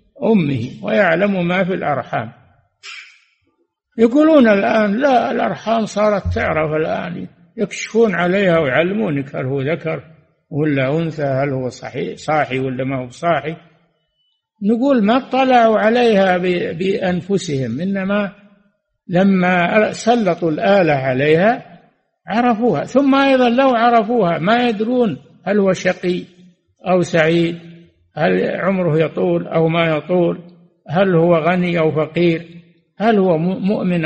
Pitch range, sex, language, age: 155-210 Hz, male, Arabic, 60-79